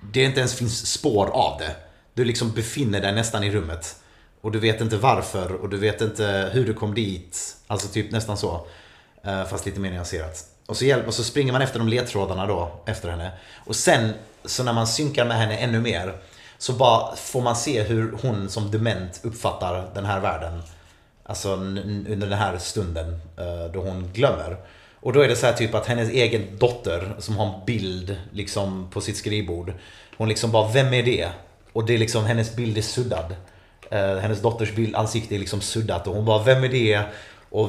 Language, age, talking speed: Swedish, 30-49, 205 wpm